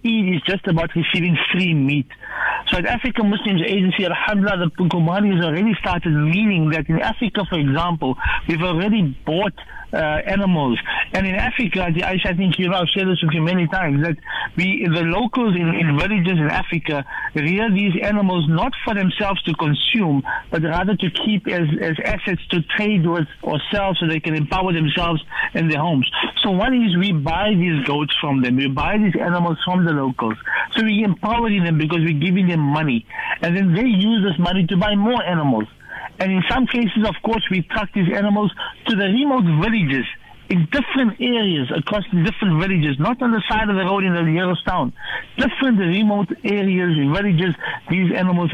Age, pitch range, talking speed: 60-79, 165-210 Hz, 190 wpm